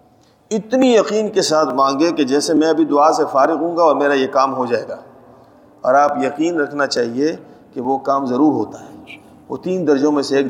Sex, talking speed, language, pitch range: male, 215 wpm, Urdu, 135-155 Hz